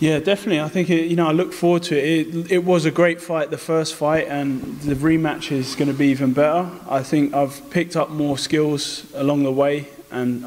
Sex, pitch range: male, 130-155 Hz